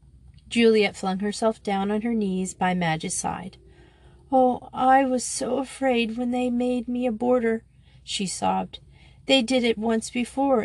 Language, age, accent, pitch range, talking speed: English, 40-59, American, 190-245 Hz, 160 wpm